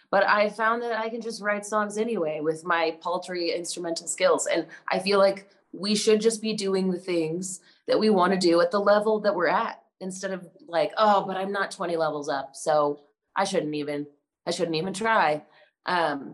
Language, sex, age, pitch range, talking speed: English, female, 20-39, 155-205 Hz, 200 wpm